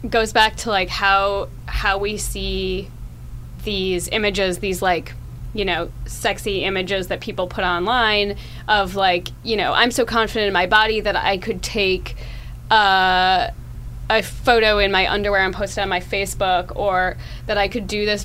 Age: 20-39